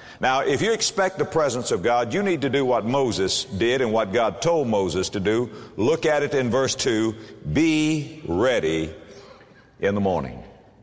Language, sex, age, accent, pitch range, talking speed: English, male, 60-79, American, 120-175 Hz, 185 wpm